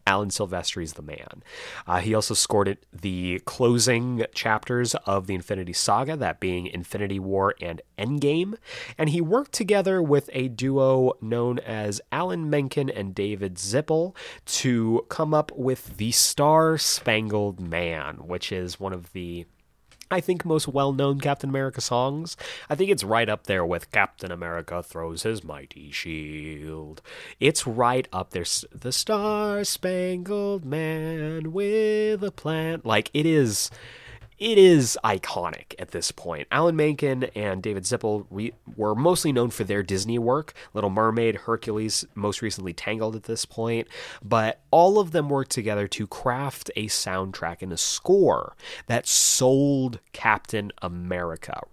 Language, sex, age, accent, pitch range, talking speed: English, male, 30-49, American, 95-145 Hz, 145 wpm